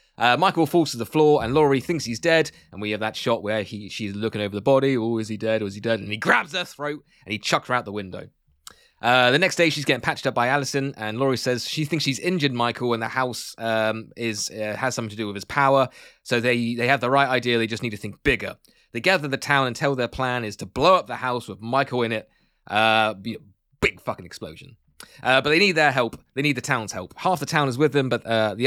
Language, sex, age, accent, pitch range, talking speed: English, male, 20-39, British, 115-155 Hz, 270 wpm